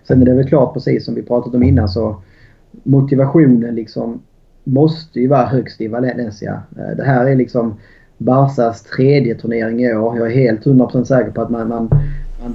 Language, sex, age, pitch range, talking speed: Swedish, male, 30-49, 115-135 Hz, 185 wpm